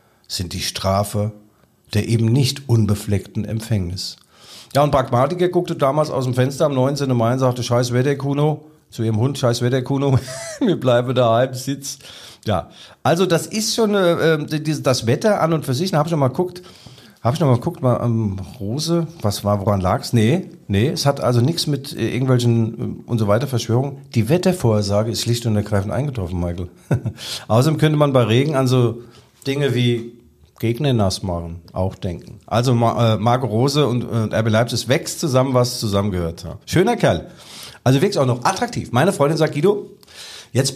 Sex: male